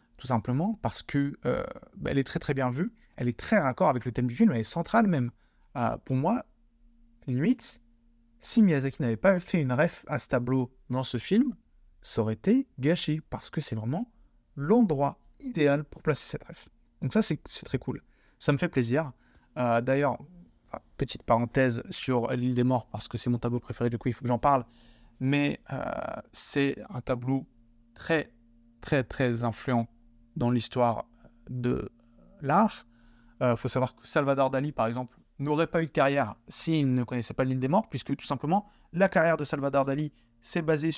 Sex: male